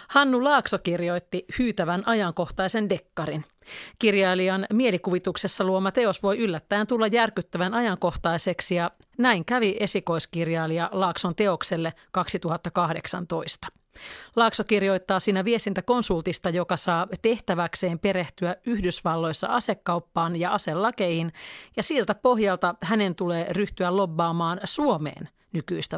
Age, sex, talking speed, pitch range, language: 30-49, female, 100 wpm, 170-215 Hz, Finnish